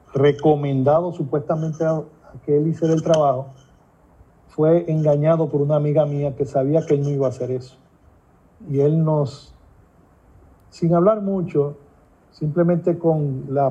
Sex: male